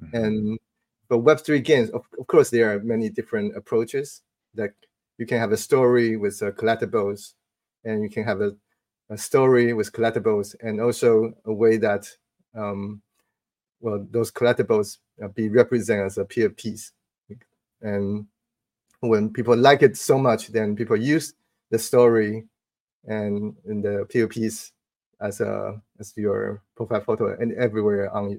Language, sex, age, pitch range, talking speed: English, male, 30-49, 105-125 Hz, 150 wpm